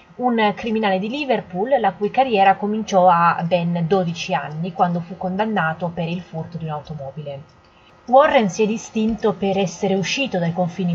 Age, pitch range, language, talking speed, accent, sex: 20-39, 170-210 Hz, Italian, 160 wpm, native, female